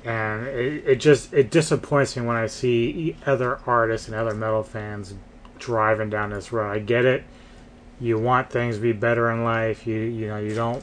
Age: 30-49